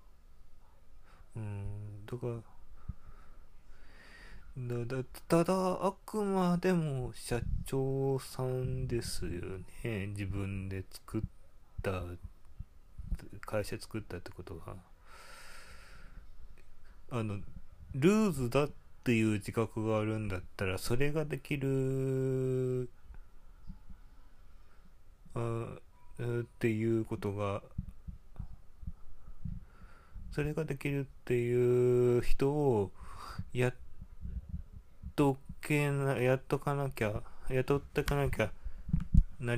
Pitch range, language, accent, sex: 95-130 Hz, Japanese, native, male